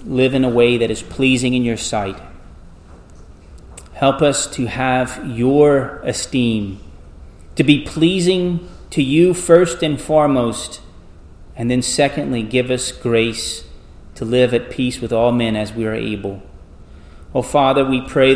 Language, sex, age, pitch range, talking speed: English, male, 30-49, 100-130 Hz, 145 wpm